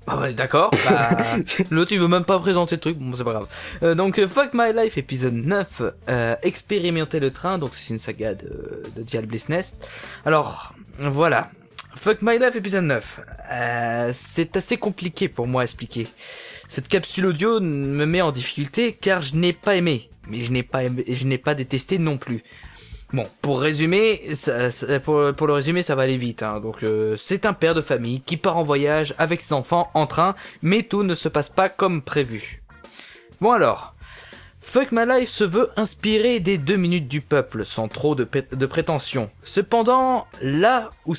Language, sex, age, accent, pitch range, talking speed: French, male, 20-39, French, 130-195 Hz, 200 wpm